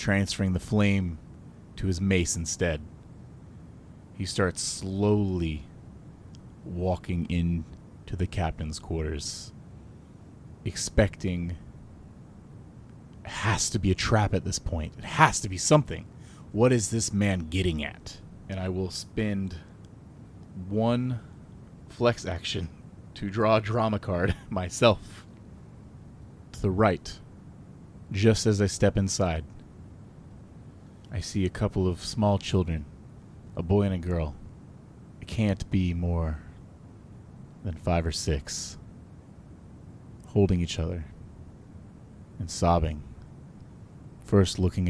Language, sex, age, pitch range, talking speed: English, male, 30-49, 85-105 Hz, 110 wpm